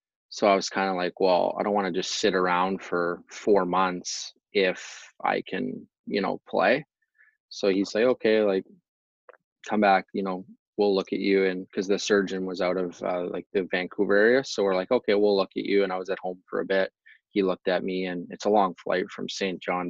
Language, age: English, 20-39